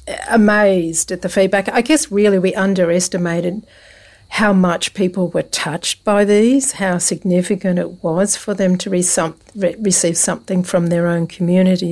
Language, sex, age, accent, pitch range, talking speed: English, female, 60-79, Australian, 170-200 Hz, 145 wpm